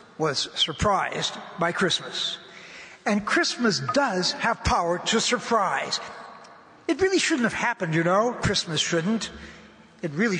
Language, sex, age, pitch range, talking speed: English, male, 60-79, 180-235 Hz, 125 wpm